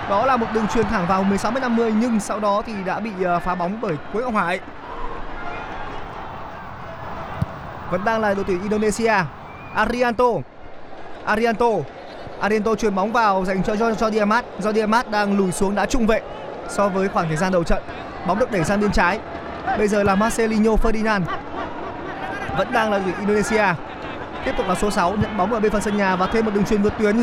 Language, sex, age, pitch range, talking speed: Vietnamese, male, 20-39, 190-220 Hz, 195 wpm